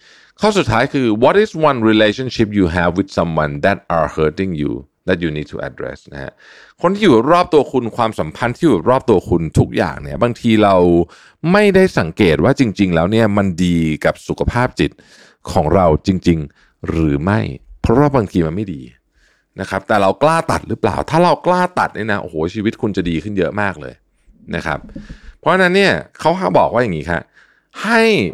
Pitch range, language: 85-135 Hz, Thai